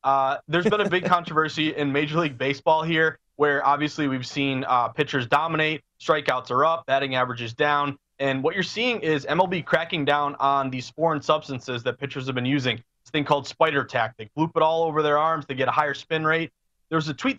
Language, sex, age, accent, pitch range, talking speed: English, male, 30-49, American, 140-170 Hz, 215 wpm